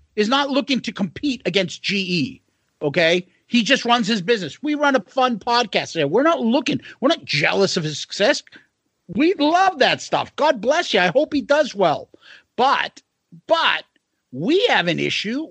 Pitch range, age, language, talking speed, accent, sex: 165-235 Hz, 50-69, English, 175 wpm, American, male